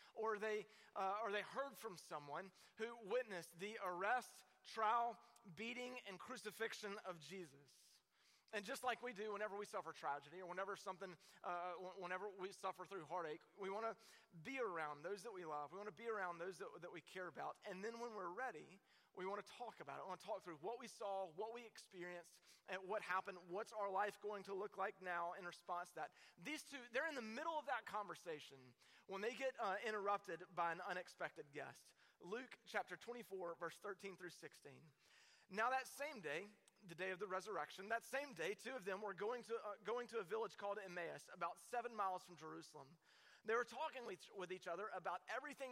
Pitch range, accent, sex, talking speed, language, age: 175-225 Hz, American, male, 205 wpm, English, 30-49